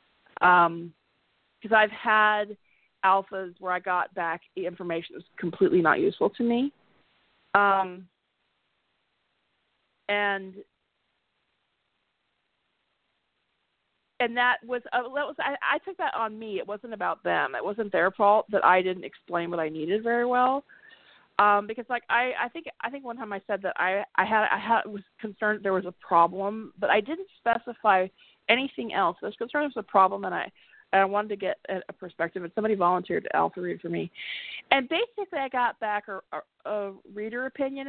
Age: 40-59